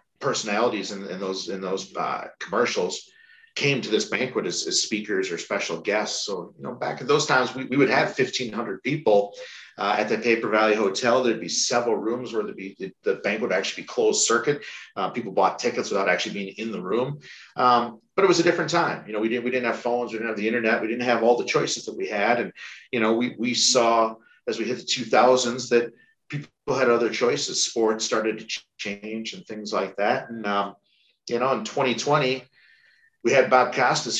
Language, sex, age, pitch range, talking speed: English, male, 40-59, 110-140 Hz, 225 wpm